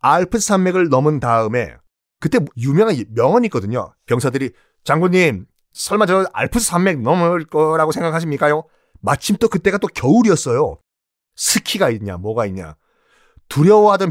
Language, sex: Korean, male